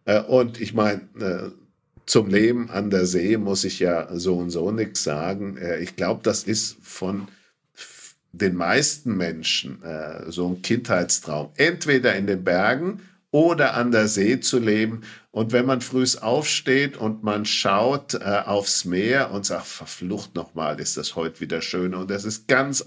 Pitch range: 95-120 Hz